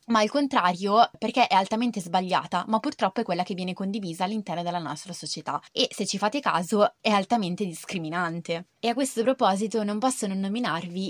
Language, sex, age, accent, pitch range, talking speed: Italian, female, 20-39, native, 180-225 Hz, 185 wpm